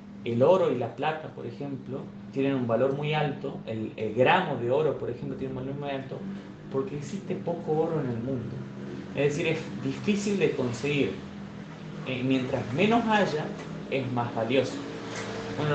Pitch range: 130-180 Hz